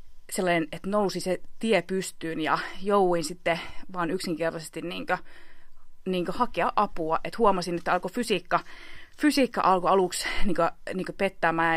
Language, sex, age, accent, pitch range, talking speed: Finnish, female, 20-39, native, 170-205 Hz, 125 wpm